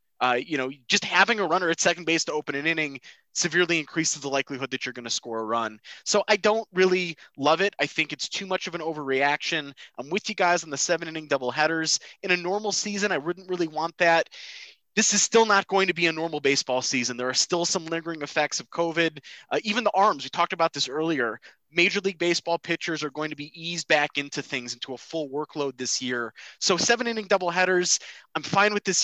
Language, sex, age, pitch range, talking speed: English, male, 20-39, 140-180 Hz, 230 wpm